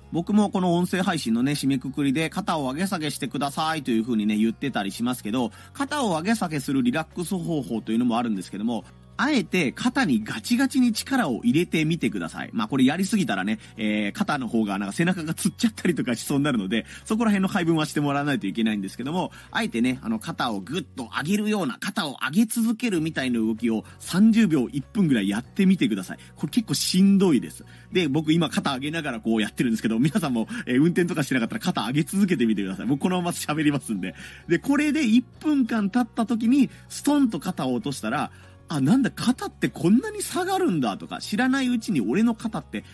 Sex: male